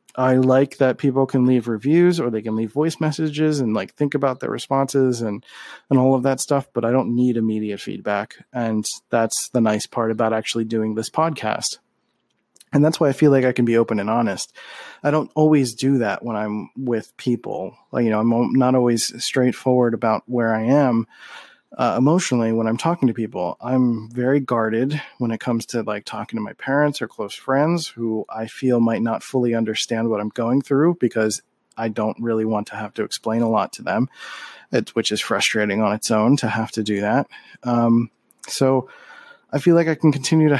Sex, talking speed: male, 205 wpm